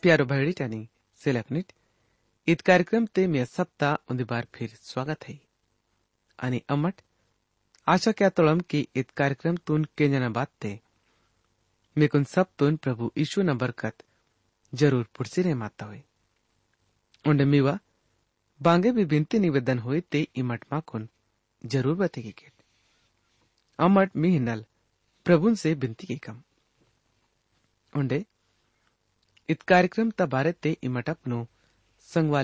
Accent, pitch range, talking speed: Indian, 105-155 Hz, 115 wpm